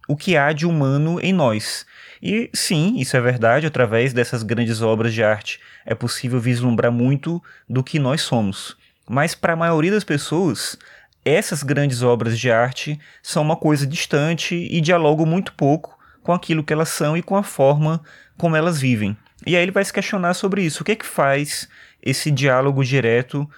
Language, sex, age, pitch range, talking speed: Portuguese, male, 20-39, 125-160 Hz, 185 wpm